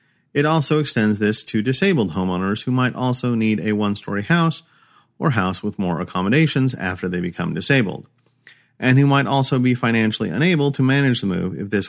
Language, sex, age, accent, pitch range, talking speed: English, male, 40-59, American, 95-135 Hz, 180 wpm